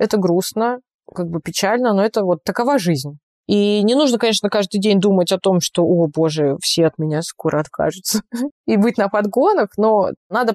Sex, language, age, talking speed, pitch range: female, Russian, 20-39, 190 wpm, 185-225 Hz